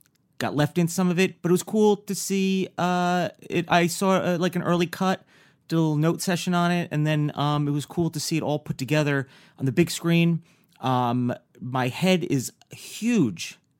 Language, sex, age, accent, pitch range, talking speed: English, male, 30-49, American, 125-175 Hz, 215 wpm